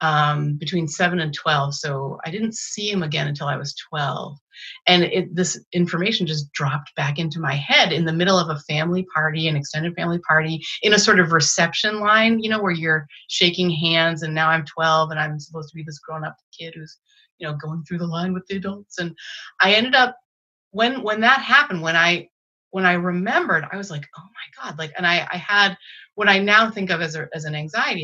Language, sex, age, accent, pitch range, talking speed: English, female, 30-49, American, 155-195 Hz, 220 wpm